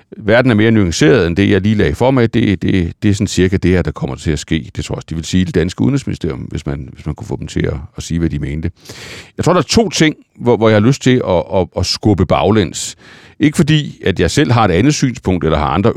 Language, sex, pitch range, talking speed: Danish, male, 90-125 Hz, 290 wpm